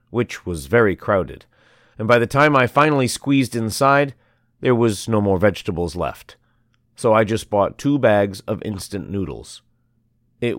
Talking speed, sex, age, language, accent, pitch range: 160 wpm, male, 40-59, English, American, 105-135 Hz